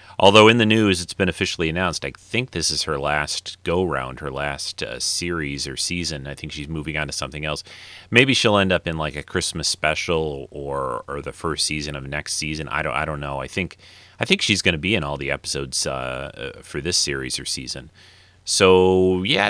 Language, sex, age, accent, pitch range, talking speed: English, male, 30-49, American, 75-95 Hz, 220 wpm